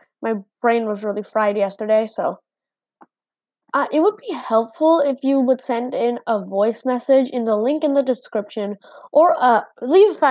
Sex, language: female, English